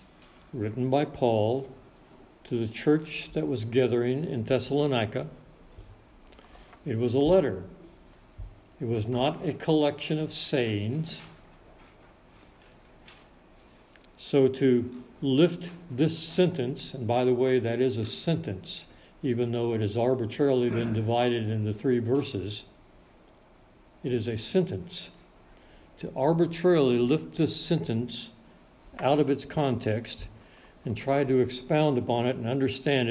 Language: English